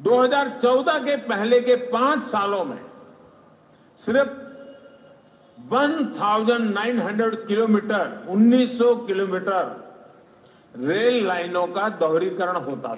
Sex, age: male, 50-69